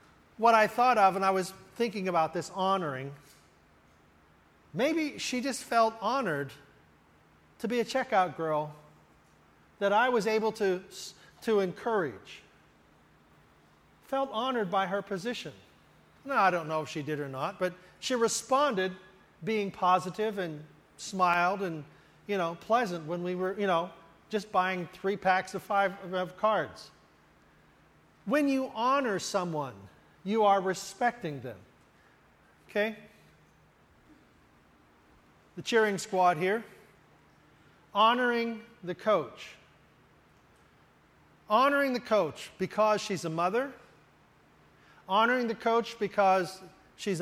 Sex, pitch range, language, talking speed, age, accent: male, 165-220 Hz, English, 120 wpm, 40-59, American